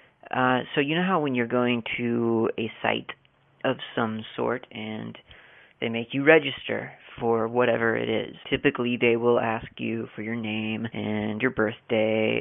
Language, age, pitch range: English, 30-49, 115-130 Hz